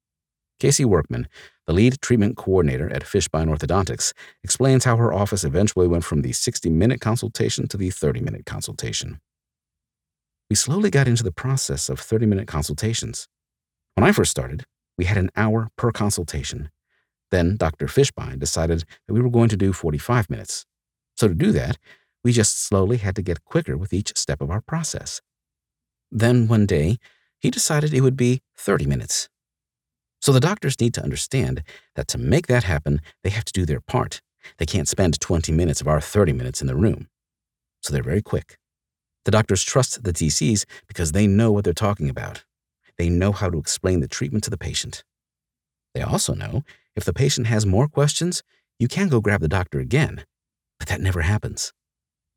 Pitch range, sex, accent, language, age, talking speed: 80-120 Hz, male, American, English, 50-69, 180 wpm